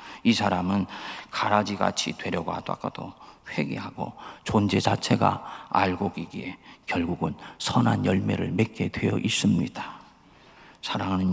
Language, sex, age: Korean, male, 40-59